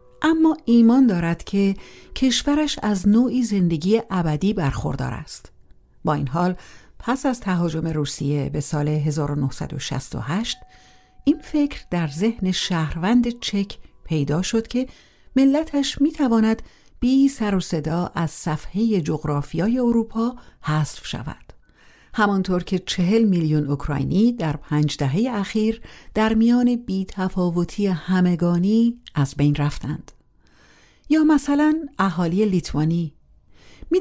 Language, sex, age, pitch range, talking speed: Persian, female, 50-69, 155-220 Hz, 110 wpm